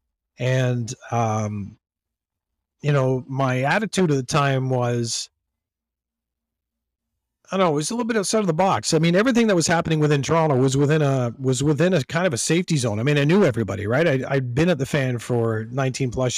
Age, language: 40-59, English